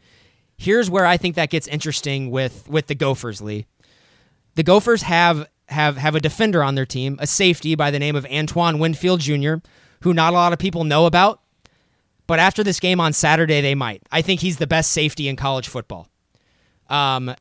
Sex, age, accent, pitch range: male, 20-39, American, 135-165 Hz